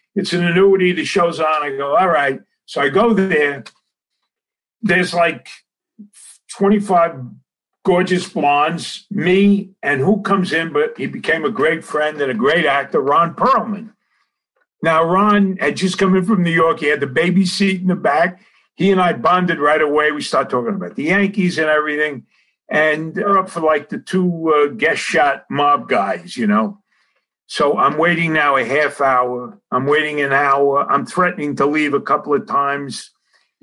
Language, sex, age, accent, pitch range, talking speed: English, male, 50-69, American, 155-205 Hz, 180 wpm